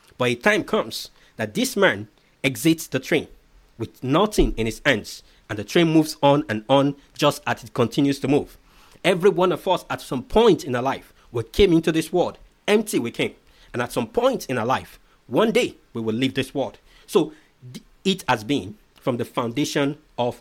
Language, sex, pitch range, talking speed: English, male, 125-165 Hz, 200 wpm